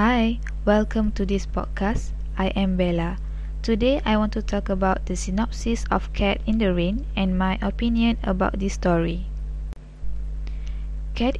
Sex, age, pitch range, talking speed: female, 10-29, 185-225 Hz, 145 wpm